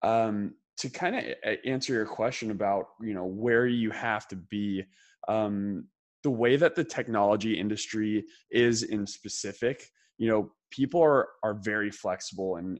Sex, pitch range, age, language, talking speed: male, 95-110 Hz, 20-39, English, 155 wpm